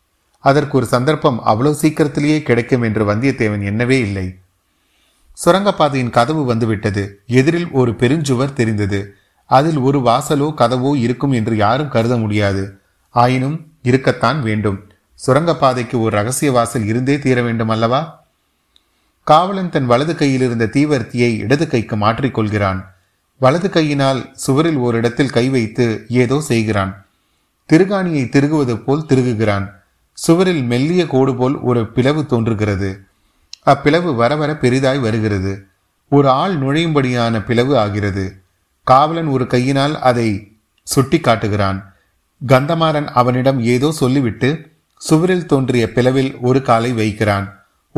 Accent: native